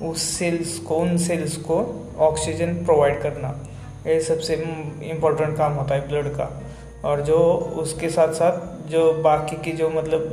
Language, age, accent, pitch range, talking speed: Hindi, 20-39, native, 145-165 Hz, 150 wpm